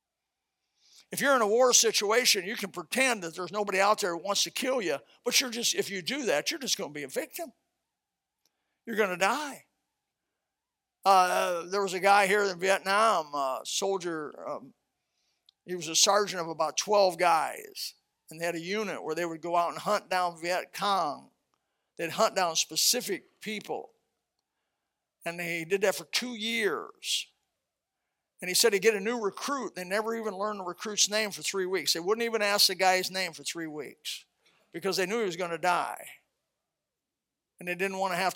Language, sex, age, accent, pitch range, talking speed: English, male, 50-69, American, 175-215 Hz, 190 wpm